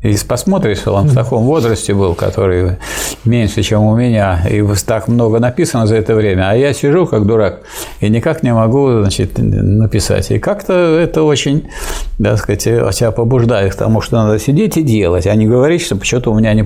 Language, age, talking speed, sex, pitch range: Russian, 50-69, 190 wpm, male, 105-130 Hz